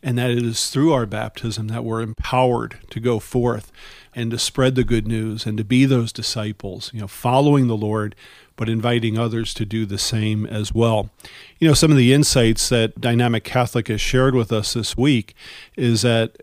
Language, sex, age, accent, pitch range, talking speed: English, male, 40-59, American, 110-125 Hz, 200 wpm